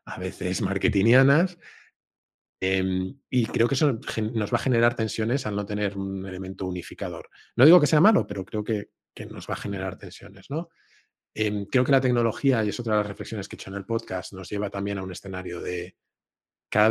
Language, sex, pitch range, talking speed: Spanish, male, 95-110 Hz, 210 wpm